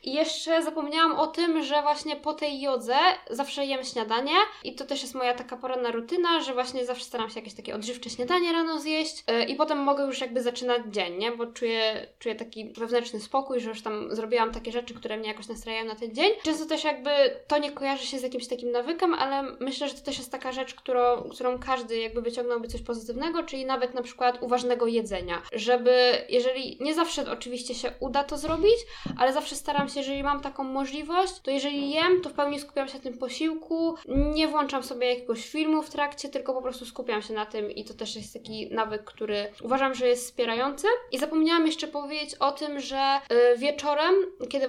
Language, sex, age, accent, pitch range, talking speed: Polish, female, 10-29, native, 245-295 Hz, 205 wpm